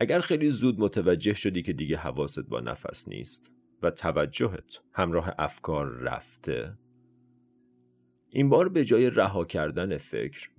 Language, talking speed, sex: Persian, 130 wpm, male